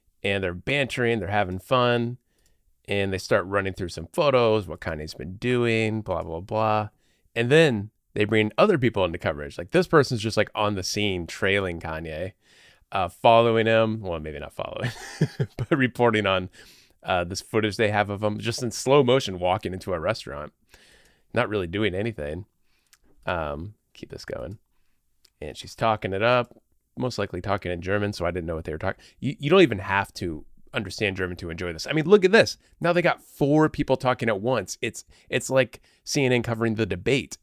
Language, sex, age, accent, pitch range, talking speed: English, male, 30-49, American, 95-120 Hz, 190 wpm